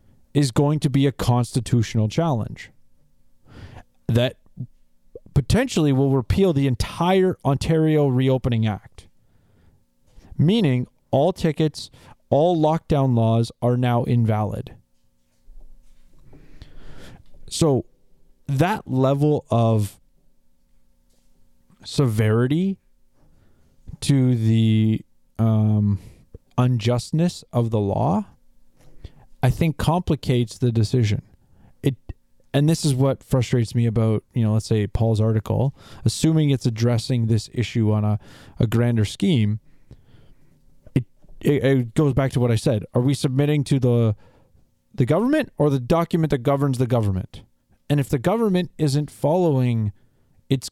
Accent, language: American, English